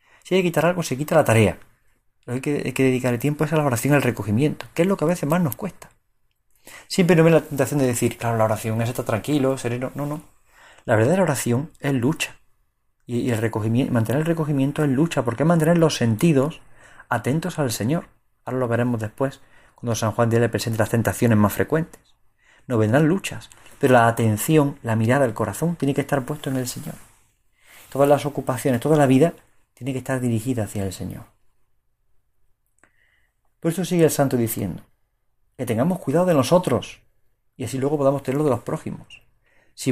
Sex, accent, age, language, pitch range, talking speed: male, Spanish, 30-49, Spanish, 115-150 Hz, 205 wpm